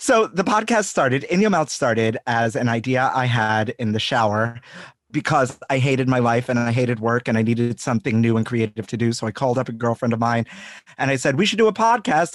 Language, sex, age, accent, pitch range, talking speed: English, male, 30-49, American, 115-145 Hz, 245 wpm